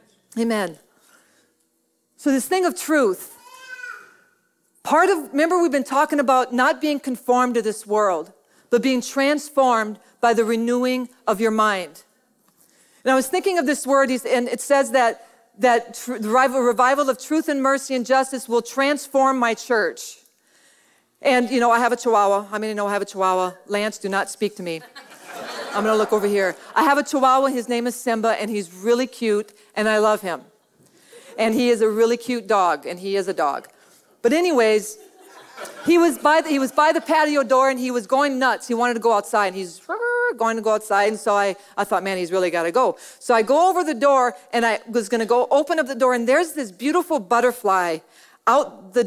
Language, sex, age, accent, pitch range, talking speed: English, female, 40-59, American, 205-275 Hz, 205 wpm